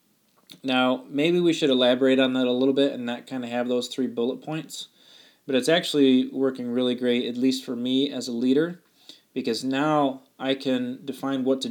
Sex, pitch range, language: male, 120-140 Hz, English